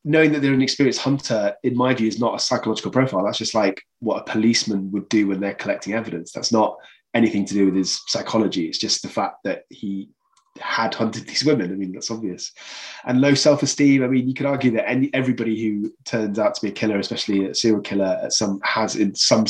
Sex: male